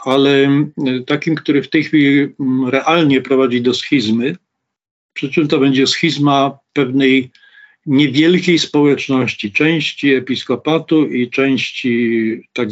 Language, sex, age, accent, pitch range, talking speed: Polish, male, 50-69, native, 120-145 Hz, 110 wpm